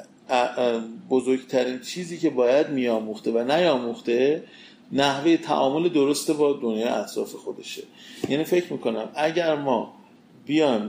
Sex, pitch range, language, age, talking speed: male, 125-170 Hz, Persian, 40-59, 110 wpm